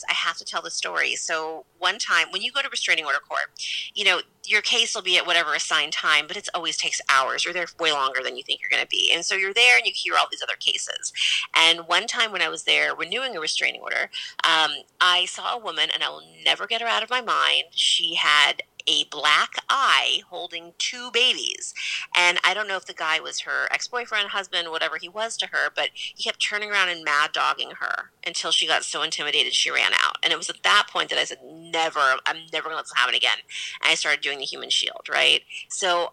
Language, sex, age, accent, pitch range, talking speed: English, female, 30-49, American, 160-215 Hz, 245 wpm